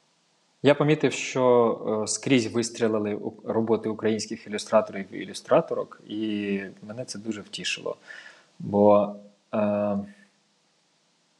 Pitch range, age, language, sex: 110-135 Hz, 20-39, Ukrainian, male